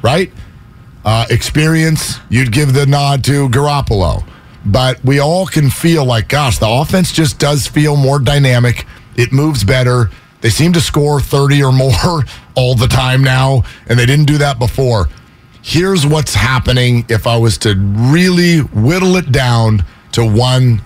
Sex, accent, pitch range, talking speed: male, American, 115-145 Hz, 160 wpm